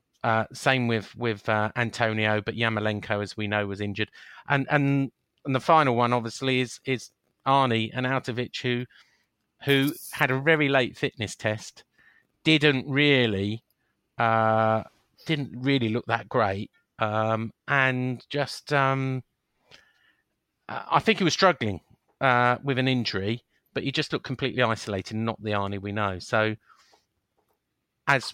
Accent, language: British, English